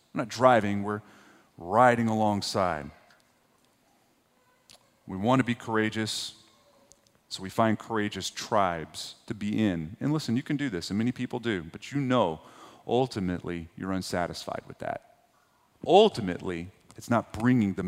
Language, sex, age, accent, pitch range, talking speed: English, male, 40-59, American, 95-120 Hz, 140 wpm